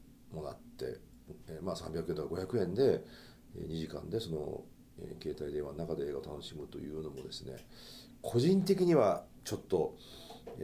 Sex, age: male, 40-59